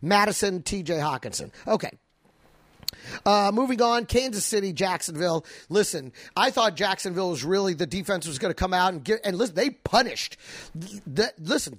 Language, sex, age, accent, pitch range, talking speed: English, male, 30-49, American, 195-270 Hz, 155 wpm